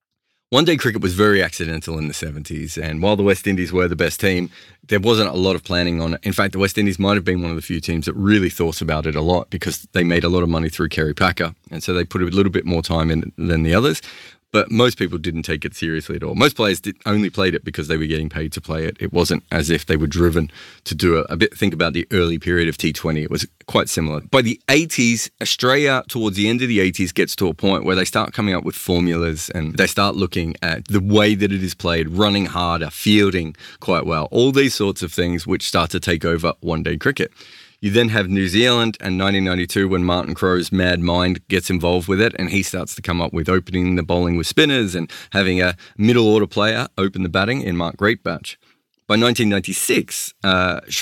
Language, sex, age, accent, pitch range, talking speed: English, male, 30-49, Australian, 85-105 Hz, 240 wpm